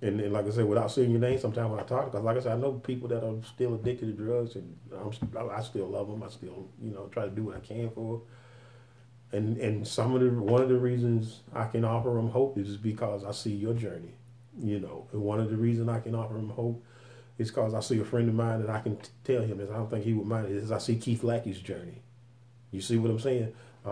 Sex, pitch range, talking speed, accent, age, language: male, 110-125 Hz, 270 wpm, American, 30-49, English